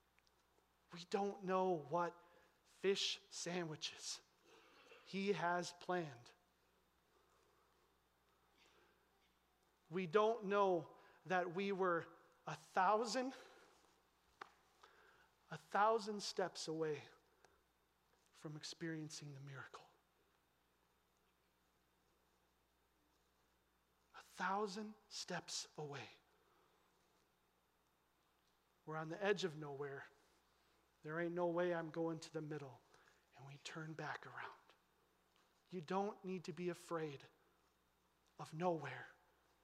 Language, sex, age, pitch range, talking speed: English, male, 40-59, 155-205 Hz, 85 wpm